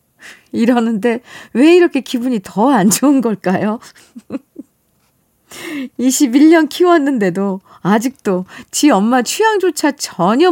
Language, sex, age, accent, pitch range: Korean, female, 40-59, native, 195-315 Hz